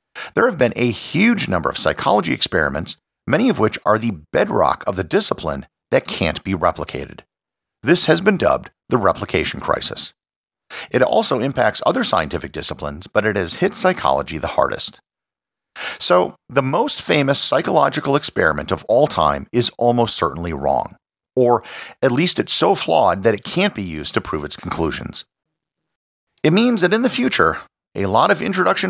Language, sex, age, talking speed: English, male, 50-69, 165 wpm